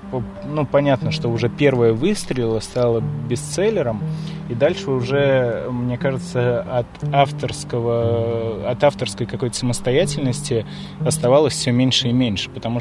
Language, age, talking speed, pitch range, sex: Russian, 20-39, 115 wpm, 115-140 Hz, male